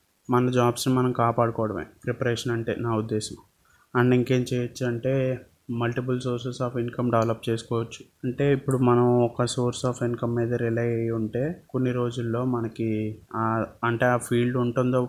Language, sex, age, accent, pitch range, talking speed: Telugu, male, 20-39, native, 120-130 Hz, 145 wpm